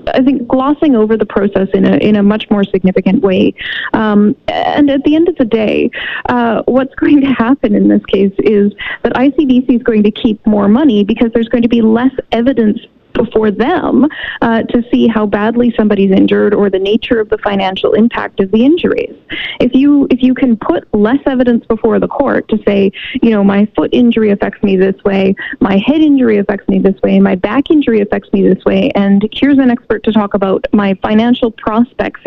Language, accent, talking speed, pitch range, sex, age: English, American, 205 wpm, 210-265 Hz, female, 20-39